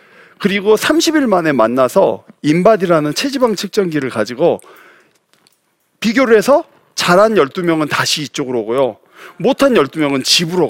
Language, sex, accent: Korean, male, native